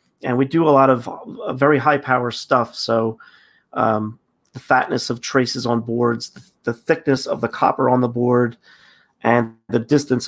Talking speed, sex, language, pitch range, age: 175 wpm, male, English, 115-130 Hz, 30-49